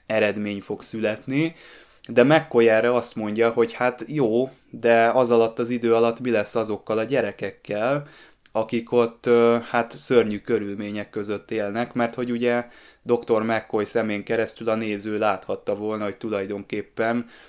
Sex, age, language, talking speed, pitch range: male, 20-39, Hungarian, 145 wpm, 105-120 Hz